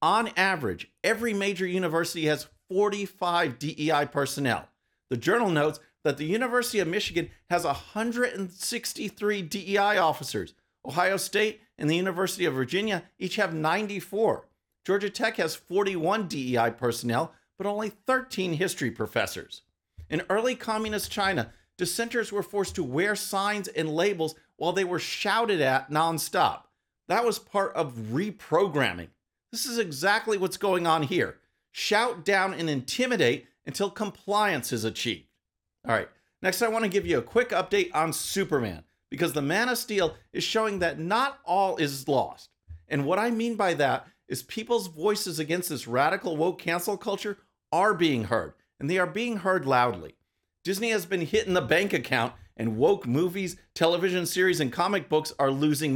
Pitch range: 150-210 Hz